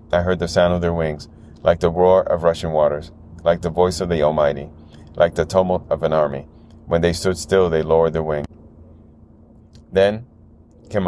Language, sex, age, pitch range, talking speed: English, male, 30-49, 80-90 Hz, 190 wpm